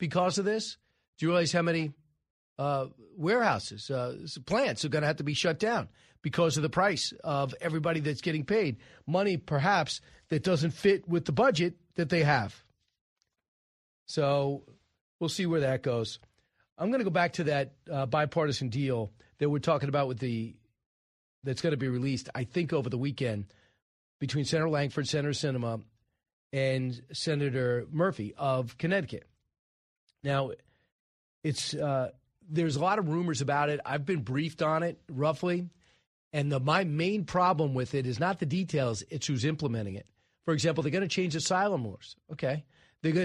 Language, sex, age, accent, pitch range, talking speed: English, male, 40-59, American, 130-170 Hz, 170 wpm